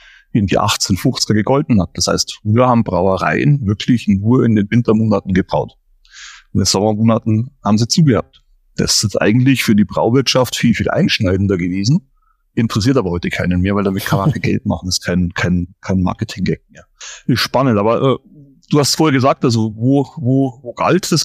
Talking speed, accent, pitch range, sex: 185 wpm, German, 100-135 Hz, male